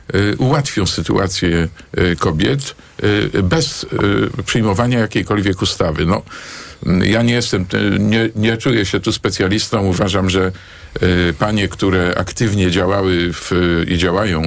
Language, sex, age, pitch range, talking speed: Polish, male, 50-69, 85-105 Hz, 110 wpm